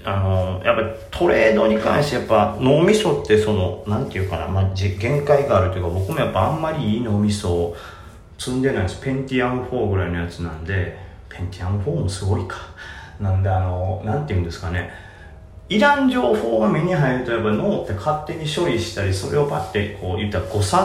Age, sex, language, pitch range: 30-49, male, Japanese, 90-115 Hz